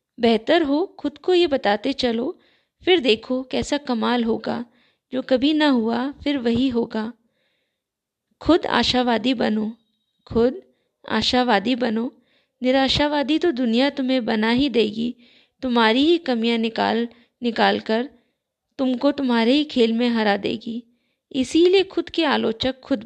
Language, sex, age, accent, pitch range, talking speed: Hindi, female, 20-39, native, 230-275 Hz, 130 wpm